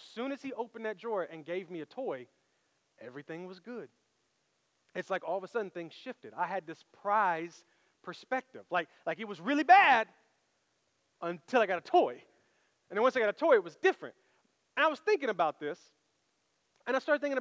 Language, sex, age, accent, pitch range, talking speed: English, male, 30-49, American, 185-275 Hz, 200 wpm